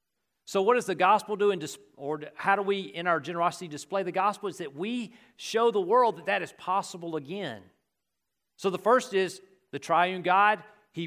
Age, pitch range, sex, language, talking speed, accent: 40-59, 175-210 Hz, male, English, 200 wpm, American